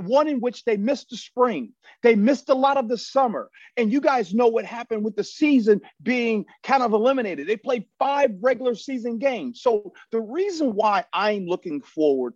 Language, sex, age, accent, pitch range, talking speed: English, male, 40-59, American, 180-265 Hz, 195 wpm